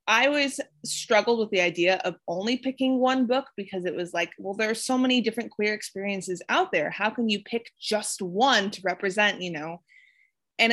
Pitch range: 180-230 Hz